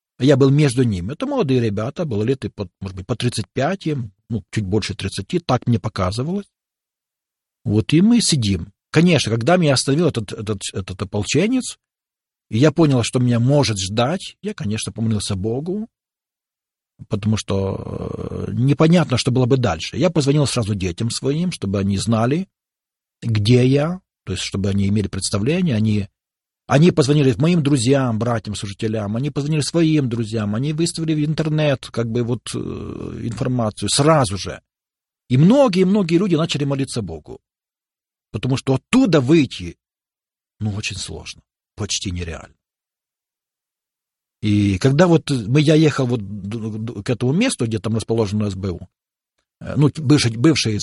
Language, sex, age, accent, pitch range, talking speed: Russian, male, 40-59, native, 105-150 Hz, 140 wpm